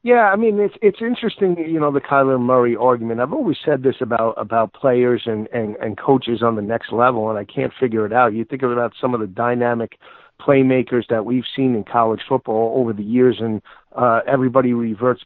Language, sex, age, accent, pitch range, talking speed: English, male, 50-69, American, 120-140 Hz, 210 wpm